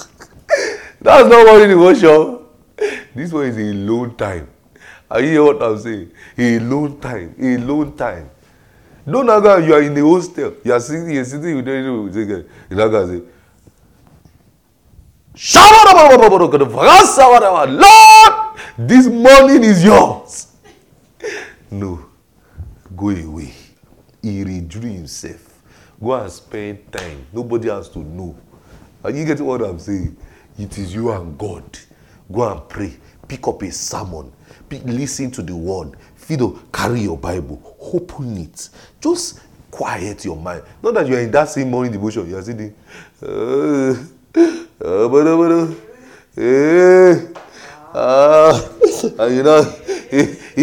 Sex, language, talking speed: male, English, 135 wpm